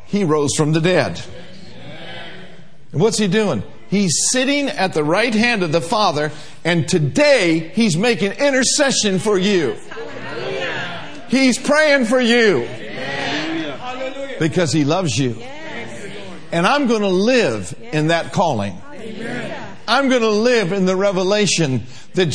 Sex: male